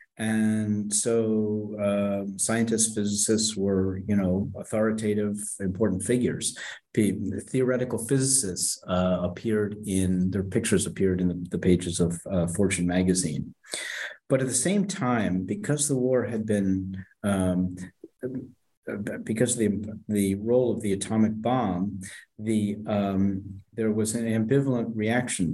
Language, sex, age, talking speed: English, male, 50-69, 125 wpm